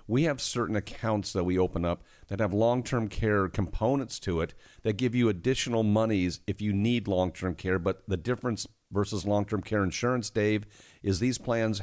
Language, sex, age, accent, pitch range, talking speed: English, male, 50-69, American, 95-115 Hz, 185 wpm